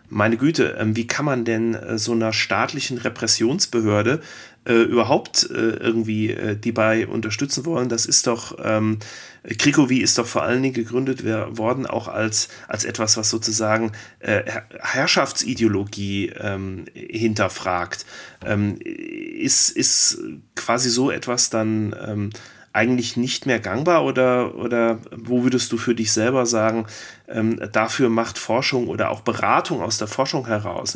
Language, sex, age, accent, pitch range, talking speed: German, male, 30-49, German, 110-130 Hz, 140 wpm